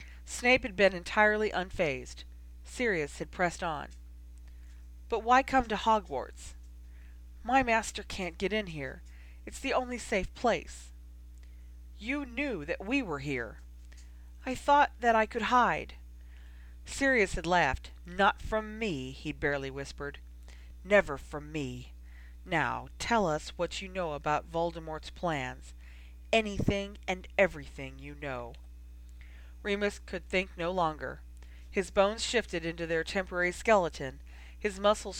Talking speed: 130 wpm